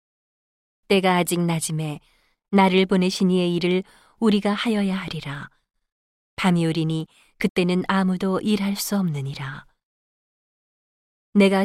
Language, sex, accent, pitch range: Korean, female, native, 160-205 Hz